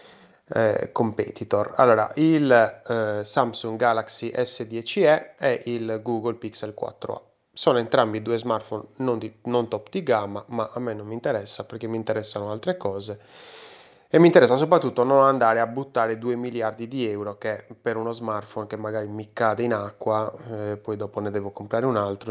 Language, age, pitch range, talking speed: Italian, 20-39, 110-130 Hz, 170 wpm